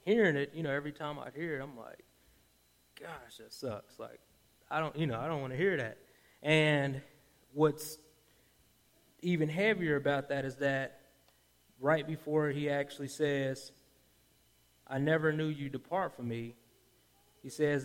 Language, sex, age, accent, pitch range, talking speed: English, male, 20-39, American, 120-150 Hz, 160 wpm